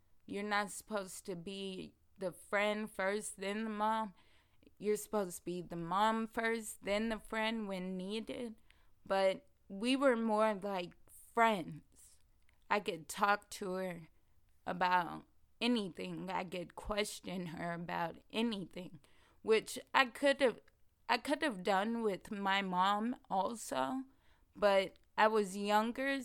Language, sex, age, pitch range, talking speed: English, female, 20-39, 175-215 Hz, 135 wpm